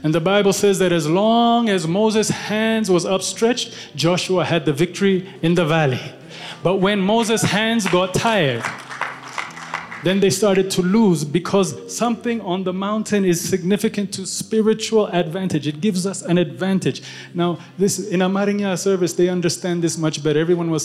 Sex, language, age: male, English, 30-49